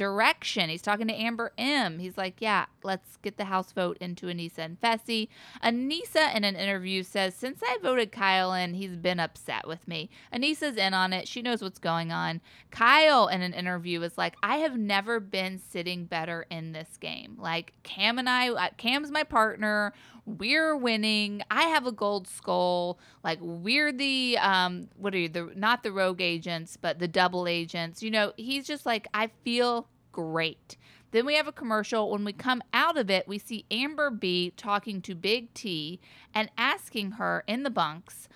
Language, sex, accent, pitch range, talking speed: English, female, American, 180-235 Hz, 190 wpm